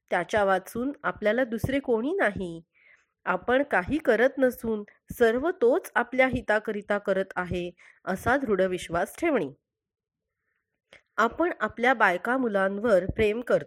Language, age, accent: Marathi, 30-49, native